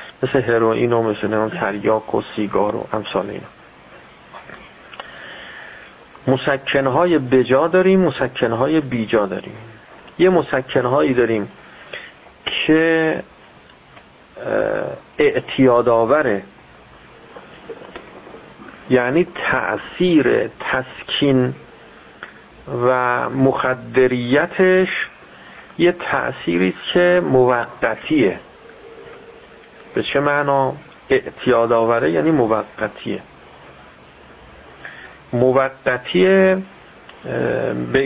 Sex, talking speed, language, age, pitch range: male, 65 wpm, Persian, 50-69, 120-170 Hz